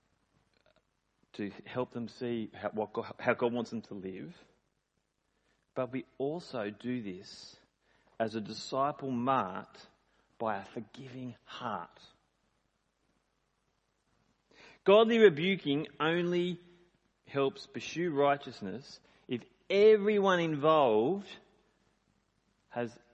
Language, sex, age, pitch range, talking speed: English, male, 40-59, 115-160 Hz, 90 wpm